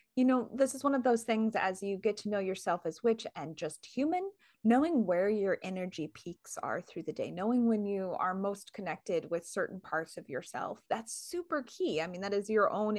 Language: English